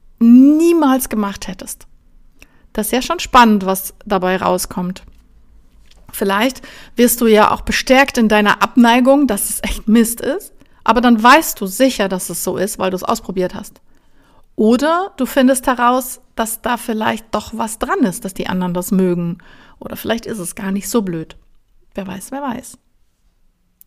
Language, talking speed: German, 170 wpm